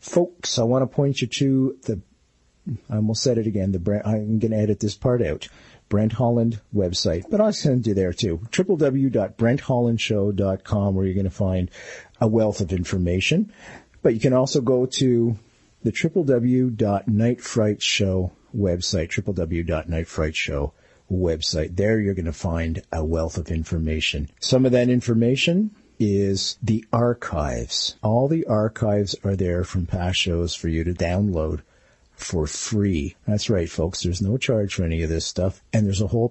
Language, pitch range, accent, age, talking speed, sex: English, 90-120 Hz, American, 50-69, 160 wpm, male